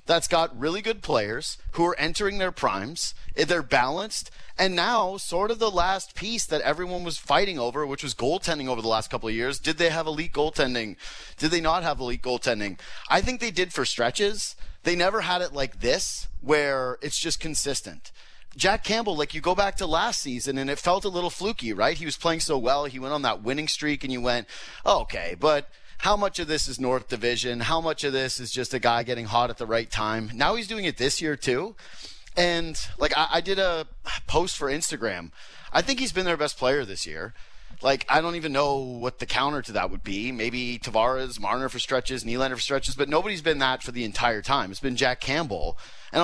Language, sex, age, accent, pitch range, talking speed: English, male, 30-49, American, 125-170 Hz, 220 wpm